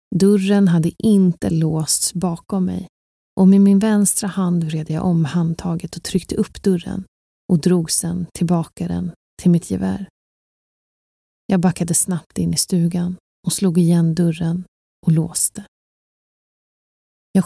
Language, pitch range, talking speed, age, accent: Swedish, 165-190 Hz, 140 wpm, 30-49, native